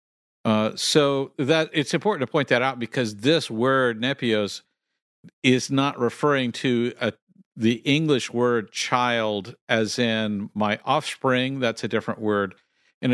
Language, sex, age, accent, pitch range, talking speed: English, male, 50-69, American, 105-130 Hz, 140 wpm